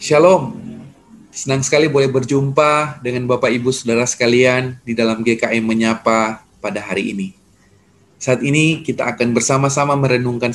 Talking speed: 130 wpm